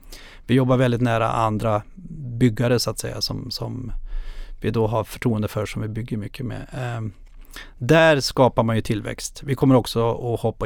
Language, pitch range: Swedish, 110-135 Hz